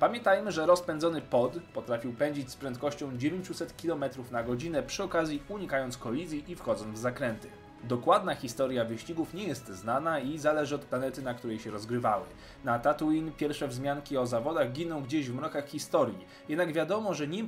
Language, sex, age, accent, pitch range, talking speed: Polish, male, 20-39, native, 125-165 Hz, 170 wpm